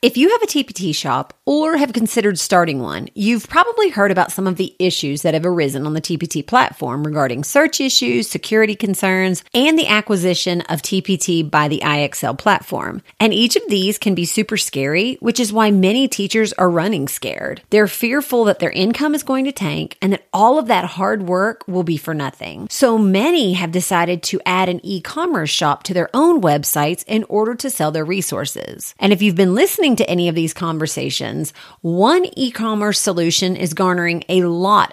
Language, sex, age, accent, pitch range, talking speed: English, female, 30-49, American, 165-225 Hz, 190 wpm